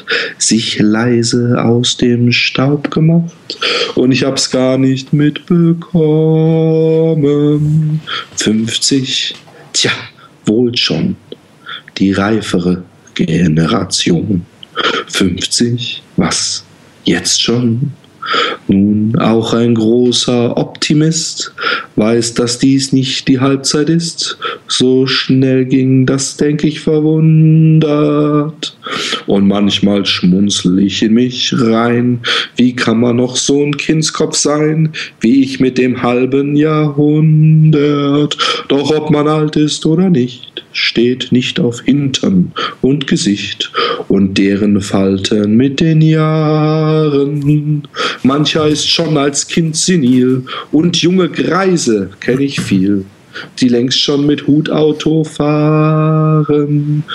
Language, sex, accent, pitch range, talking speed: German, male, German, 120-155 Hz, 105 wpm